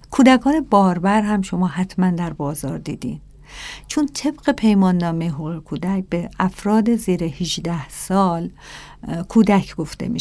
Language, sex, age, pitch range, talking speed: Persian, female, 50-69, 165-195 Hz, 125 wpm